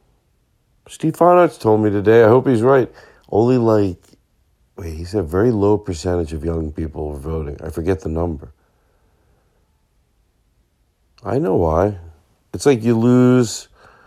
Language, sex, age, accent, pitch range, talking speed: English, male, 50-69, American, 90-120 Hz, 140 wpm